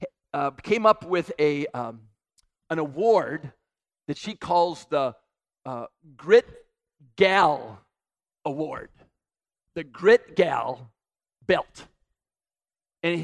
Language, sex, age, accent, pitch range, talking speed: English, male, 50-69, American, 155-200 Hz, 90 wpm